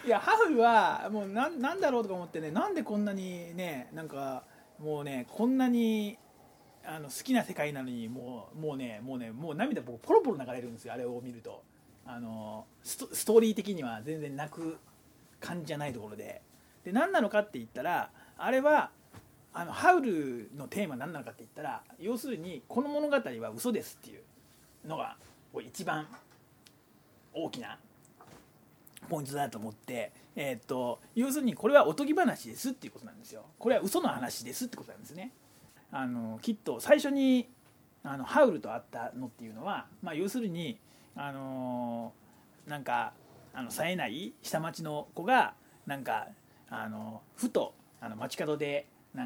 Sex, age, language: male, 40-59, Japanese